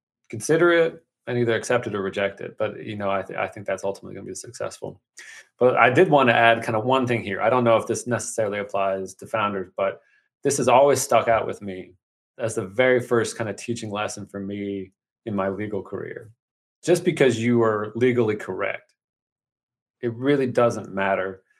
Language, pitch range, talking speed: English, 100-120 Hz, 195 wpm